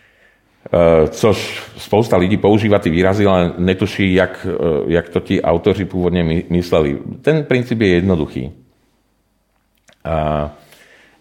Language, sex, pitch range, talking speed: Czech, male, 80-95 Hz, 125 wpm